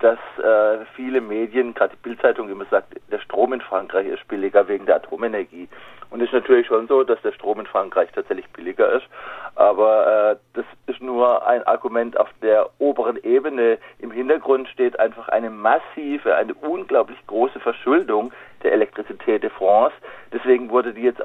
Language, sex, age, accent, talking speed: German, male, 40-59, German, 170 wpm